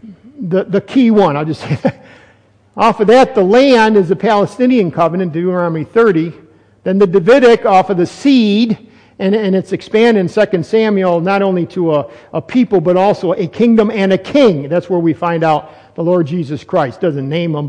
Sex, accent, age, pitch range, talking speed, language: male, American, 50-69, 165-230 Hz, 195 wpm, English